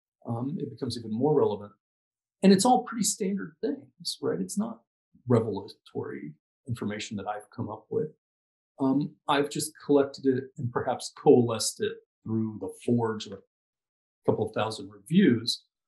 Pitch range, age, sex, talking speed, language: 120-190 Hz, 40-59, male, 145 wpm, English